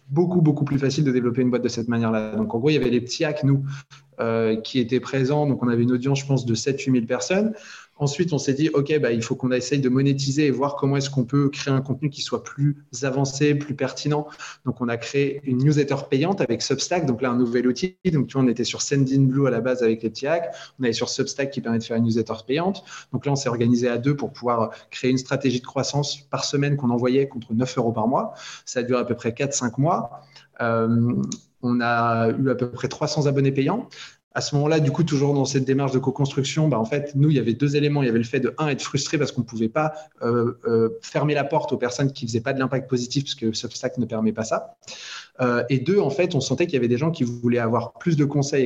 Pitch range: 120-145 Hz